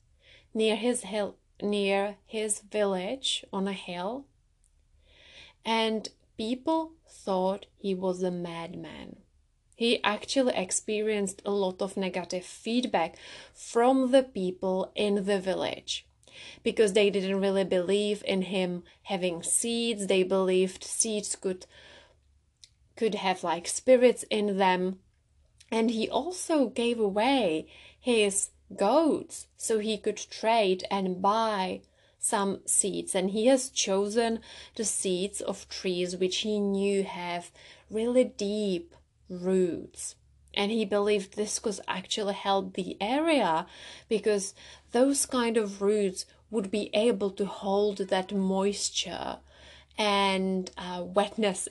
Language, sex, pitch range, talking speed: English, female, 185-220 Hz, 120 wpm